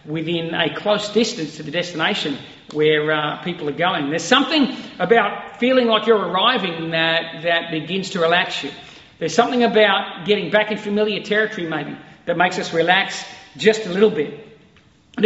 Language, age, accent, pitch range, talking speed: English, 40-59, Australian, 170-235 Hz, 170 wpm